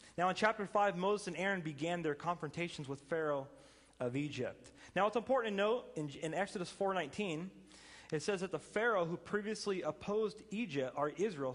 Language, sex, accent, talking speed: English, male, American, 175 wpm